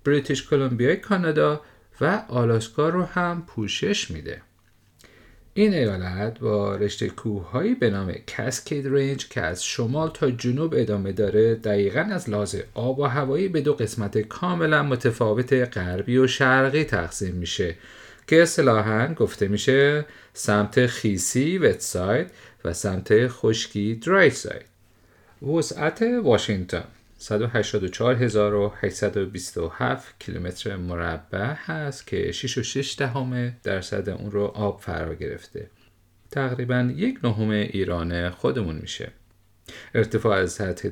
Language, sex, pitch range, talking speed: Persian, male, 100-135 Hz, 115 wpm